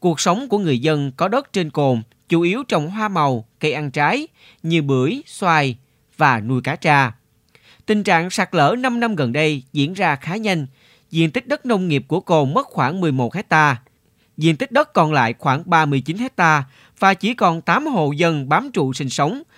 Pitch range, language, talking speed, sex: 135-185 Hz, Vietnamese, 200 wpm, male